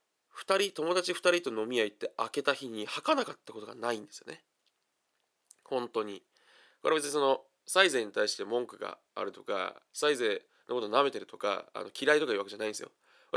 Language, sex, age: Japanese, male, 20-39